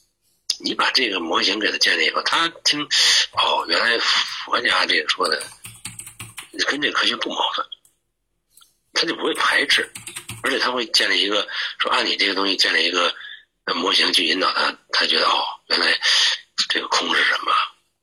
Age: 50-69